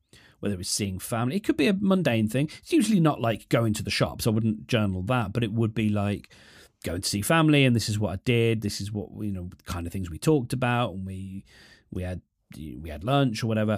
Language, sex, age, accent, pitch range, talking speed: English, male, 40-59, British, 100-140 Hz, 260 wpm